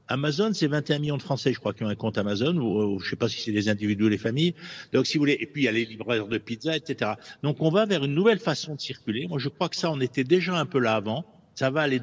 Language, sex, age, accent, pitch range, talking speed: French, male, 60-79, French, 135-185 Hz, 320 wpm